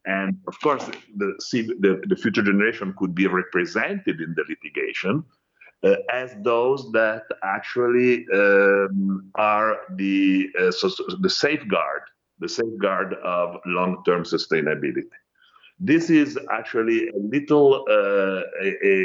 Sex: male